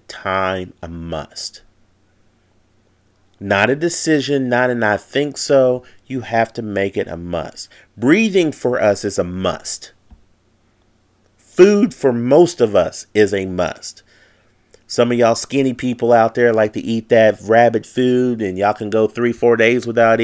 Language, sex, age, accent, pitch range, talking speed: English, male, 40-59, American, 95-115 Hz, 155 wpm